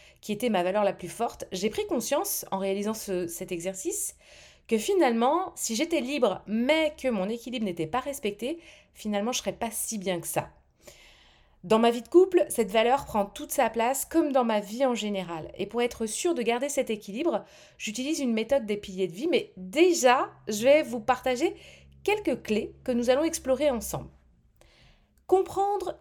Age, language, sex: 30-49, French, female